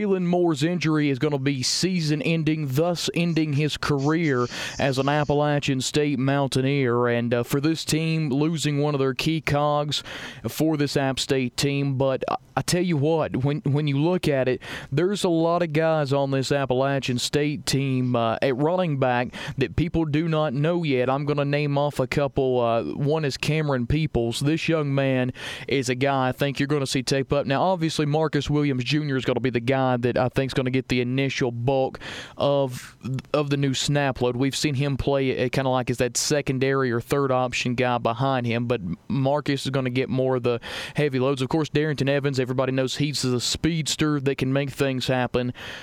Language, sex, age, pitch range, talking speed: English, male, 30-49, 130-150 Hz, 205 wpm